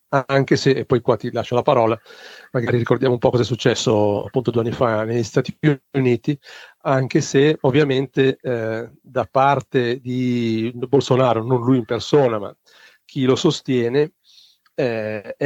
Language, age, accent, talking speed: Italian, 40-59, native, 155 wpm